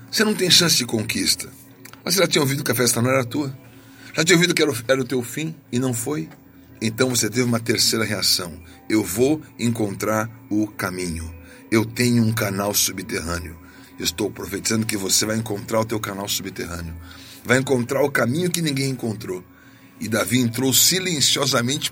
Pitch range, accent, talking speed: 105-145 Hz, Brazilian, 180 wpm